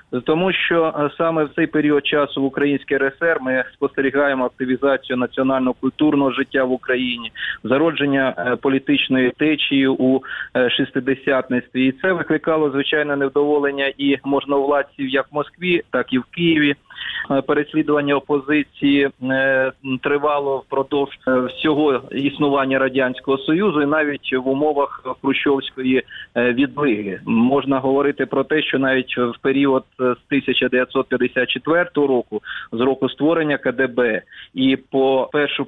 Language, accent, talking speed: Ukrainian, native, 115 wpm